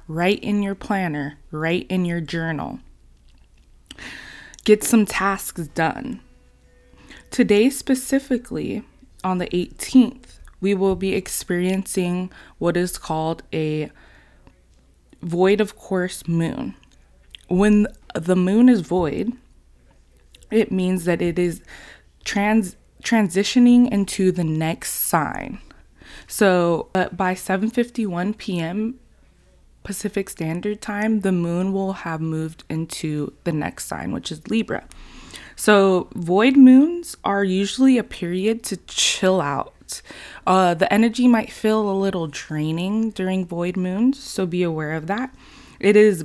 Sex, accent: female, American